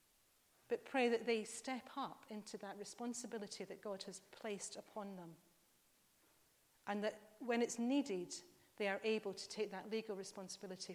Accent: British